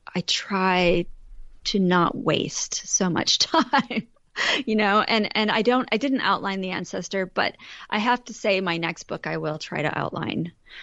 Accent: American